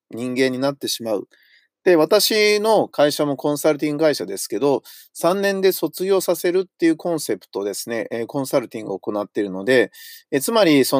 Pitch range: 135-230 Hz